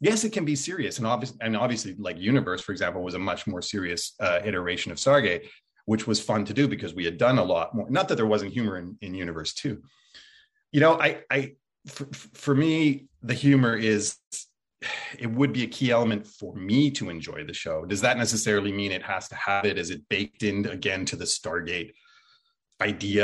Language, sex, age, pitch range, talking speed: English, male, 30-49, 105-140 Hz, 215 wpm